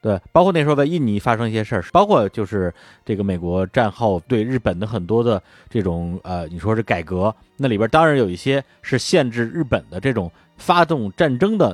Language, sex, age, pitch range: Chinese, male, 30-49, 95-125 Hz